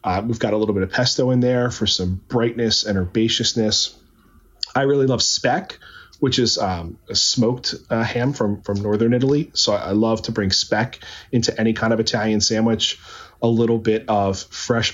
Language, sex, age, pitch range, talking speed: English, male, 30-49, 100-115 Hz, 190 wpm